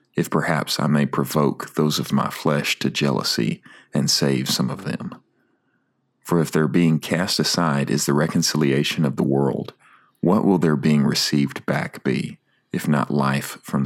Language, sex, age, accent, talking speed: English, male, 40-59, American, 175 wpm